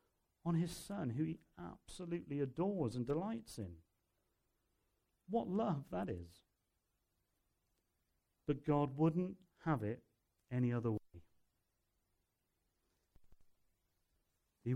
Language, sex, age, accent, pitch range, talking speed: English, male, 40-59, British, 95-150 Hz, 95 wpm